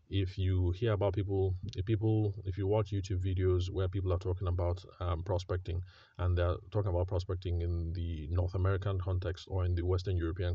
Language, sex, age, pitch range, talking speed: English, male, 30-49, 90-100 Hz, 195 wpm